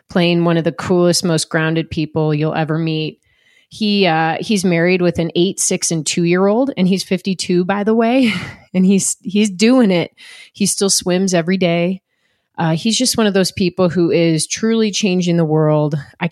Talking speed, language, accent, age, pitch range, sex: 190 wpm, English, American, 30-49, 160-195 Hz, female